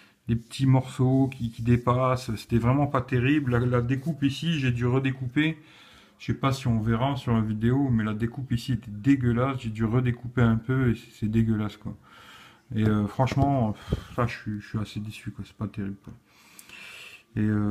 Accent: French